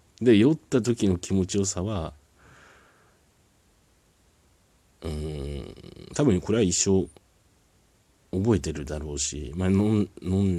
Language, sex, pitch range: Japanese, male, 80-95 Hz